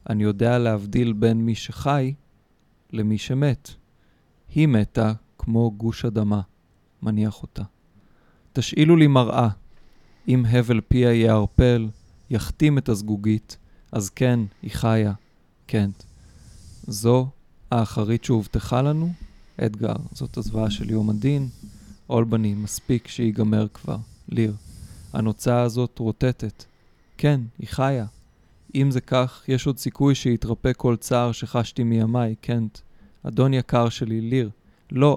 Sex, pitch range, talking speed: male, 110-125 Hz, 120 wpm